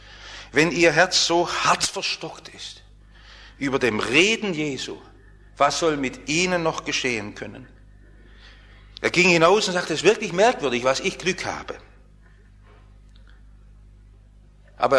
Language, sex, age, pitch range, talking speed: English, male, 50-69, 115-180 Hz, 130 wpm